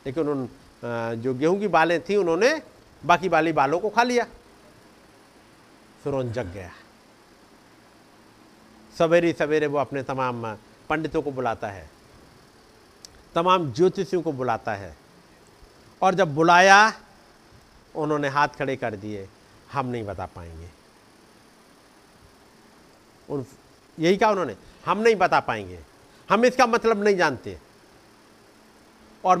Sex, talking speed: male, 120 wpm